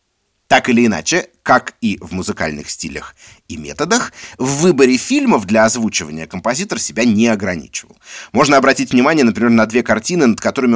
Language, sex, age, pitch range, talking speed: Russian, male, 30-49, 105-150 Hz, 155 wpm